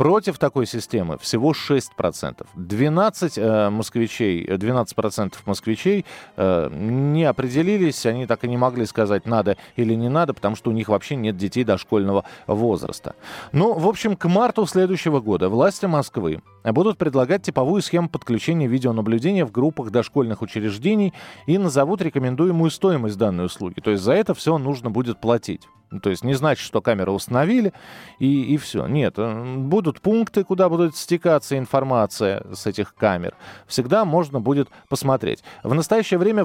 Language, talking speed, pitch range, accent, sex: Russian, 150 wpm, 110-175 Hz, native, male